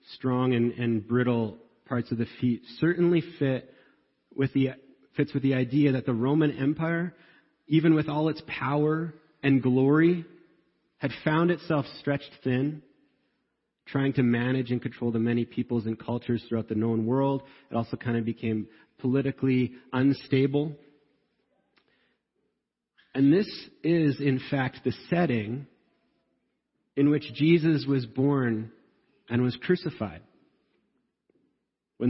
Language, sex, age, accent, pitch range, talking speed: English, male, 30-49, American, 125-155 Hz, 130 wpm